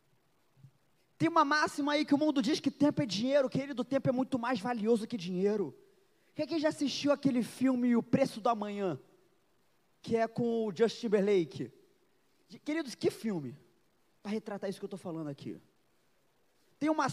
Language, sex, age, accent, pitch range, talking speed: Portuguese, male, 20-39, Brazilian, 170-260 Hz, 180 wpm